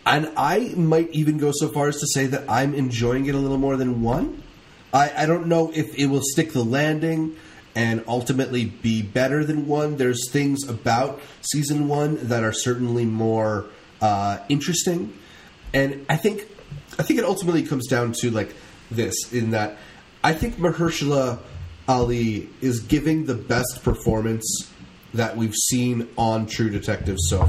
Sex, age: male, 30-49